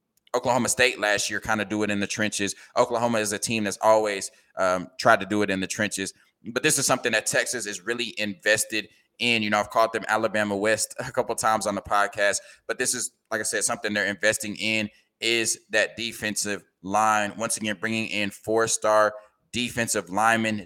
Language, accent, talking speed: English, American, 200 wpm